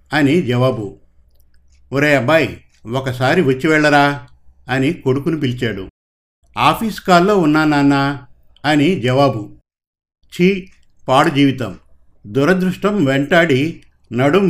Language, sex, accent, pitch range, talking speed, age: Telugu, male, native, 115-165 Hz, 85 wpm, 50-69